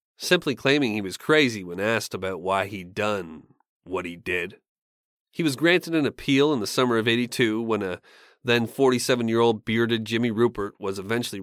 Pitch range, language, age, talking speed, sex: 100-125 Hz, English, 30-49, 175 wpm, male